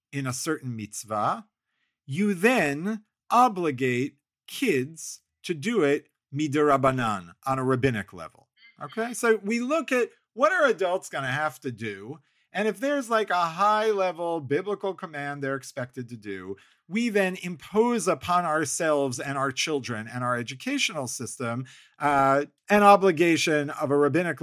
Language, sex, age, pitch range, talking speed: English, male, 50-69, 120-190 Hz, 145 wpm